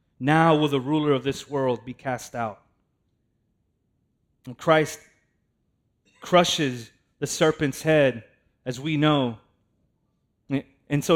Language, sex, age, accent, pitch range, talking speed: English, male, 30-49, American, 125-160 Hz, 115 wpm